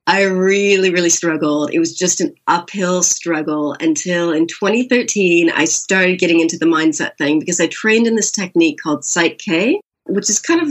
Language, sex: English, female